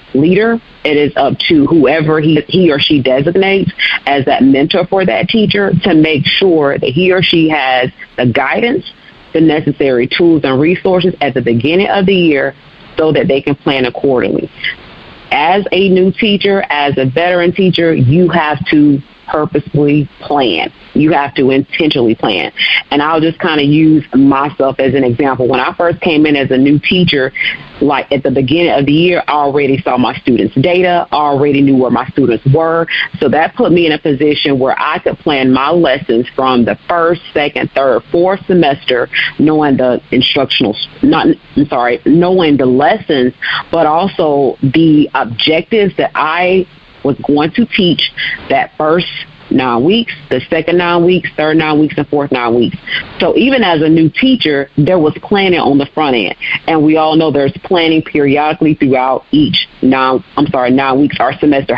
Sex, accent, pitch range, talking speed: female, American, 140-175 Hz, 175 wpm